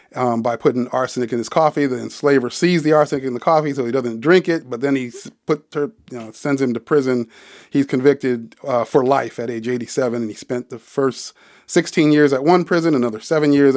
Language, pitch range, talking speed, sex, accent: English, 125-150 Hz, 220 wpm, male, American